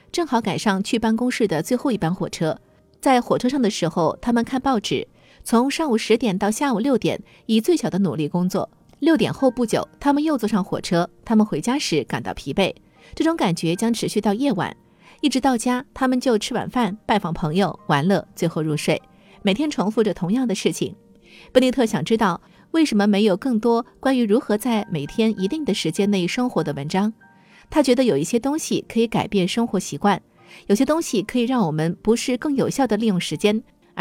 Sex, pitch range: female, 190-250 Hz